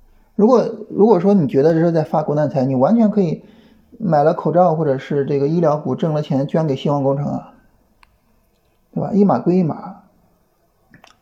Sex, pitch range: male, 145-205 Hz